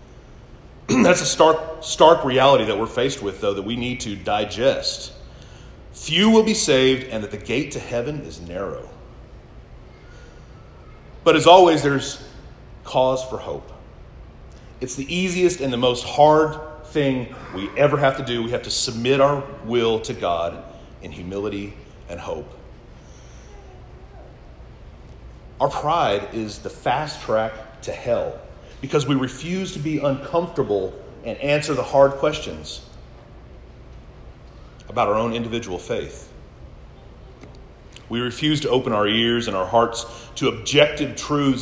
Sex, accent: male, American